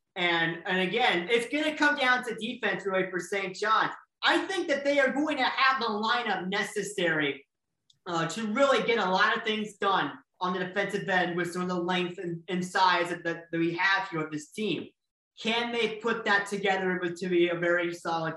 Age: 30-49